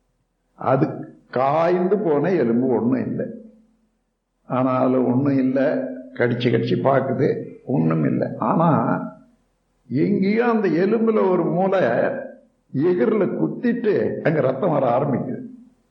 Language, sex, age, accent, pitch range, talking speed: Tamil, male, 60-79, native, 140-225 Hz, 100 wpm